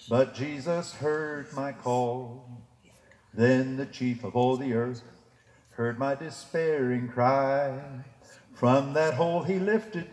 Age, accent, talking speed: 60-79, American, 125 wpm